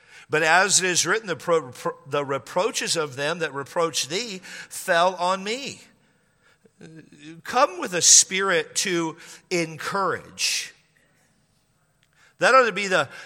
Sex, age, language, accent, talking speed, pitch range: male, 50-69, English, American, 125 wpm, 135-175 Hz